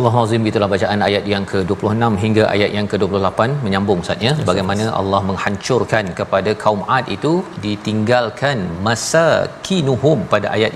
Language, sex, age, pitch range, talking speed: Malayalam, male, 40-59, 100-125 Hz, 140 wpm